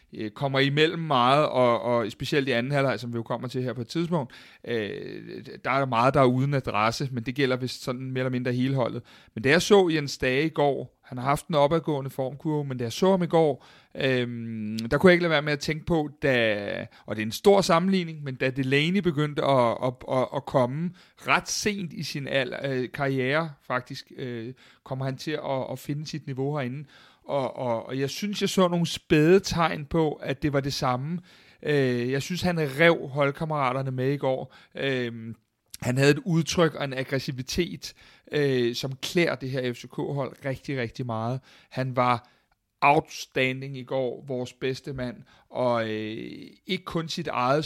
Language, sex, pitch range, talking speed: Danish, male, 130-155 Hz, 195 wpm